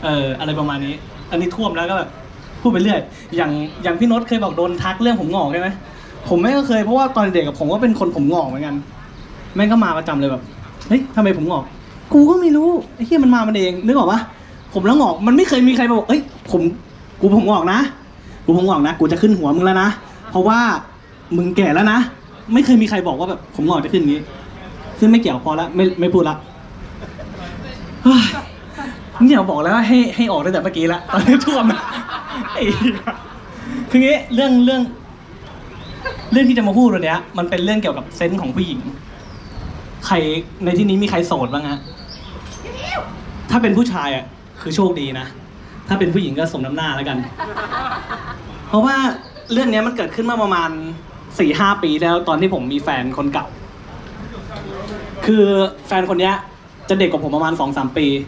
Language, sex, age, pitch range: Thai, male, 20-39, 160-235 Hz